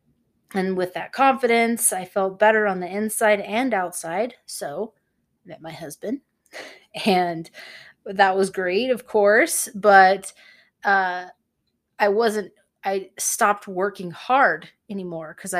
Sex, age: female, 30-49